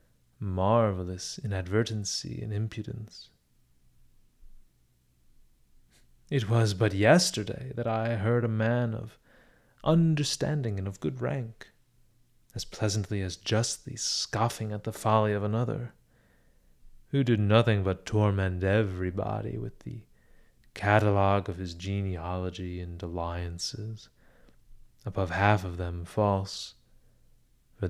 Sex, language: male, English